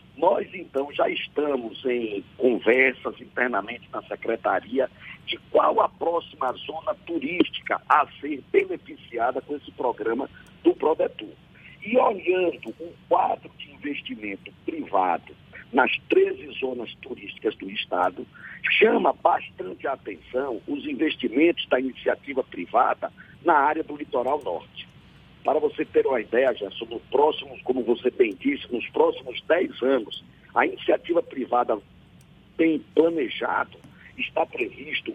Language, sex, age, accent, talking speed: Portuguese, male, 60-79, Brazilian, 125 wpm